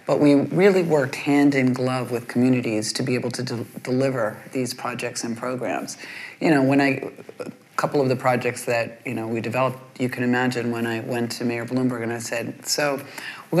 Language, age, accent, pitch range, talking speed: English, 40-59, American, 125-165 Hz, 205 wpm